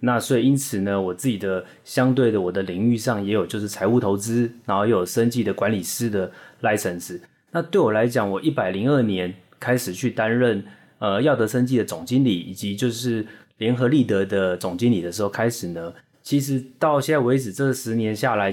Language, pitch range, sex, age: Chinese, 100-125 Hz, male, 20-39